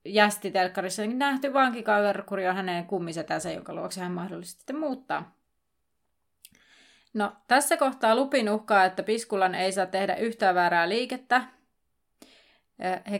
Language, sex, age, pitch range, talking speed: Finnish, female, 20-39, 185-230 Hz, 115 wpm